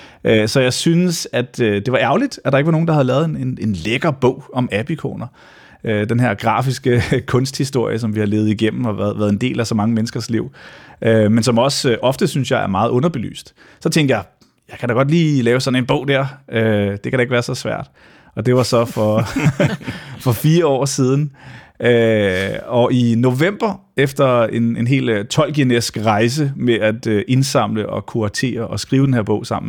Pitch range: 105-135 Hz